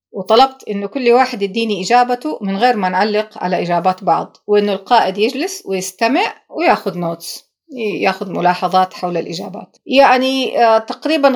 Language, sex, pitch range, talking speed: Arabic, female, 190-250 Hz, 130 wpm